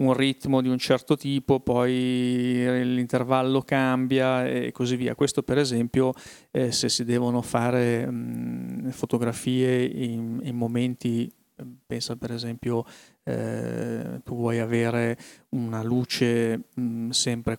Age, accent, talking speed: 30-49, native, 115 wpm